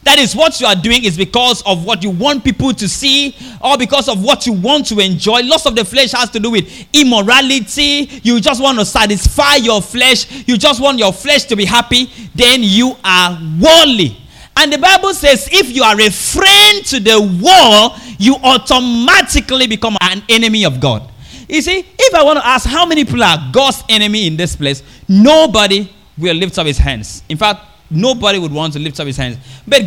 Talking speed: 205 wpm